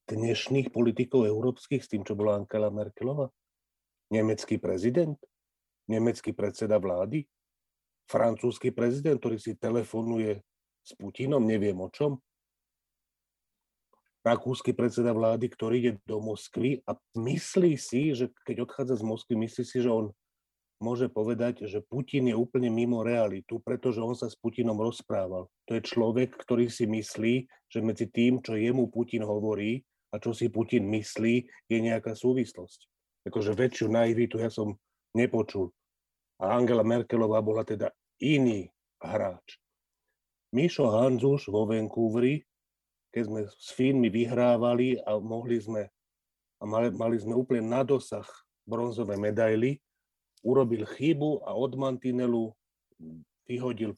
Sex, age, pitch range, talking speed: male, 40-59, 110-125 Hz, 130 wpm